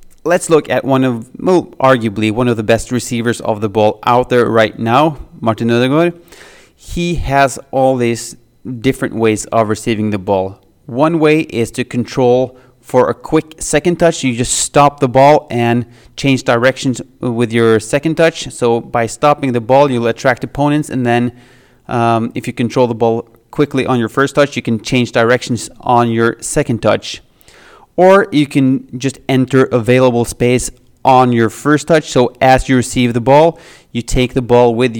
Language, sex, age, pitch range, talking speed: English, male, 30-49, 115-135 Hz, 180 wpm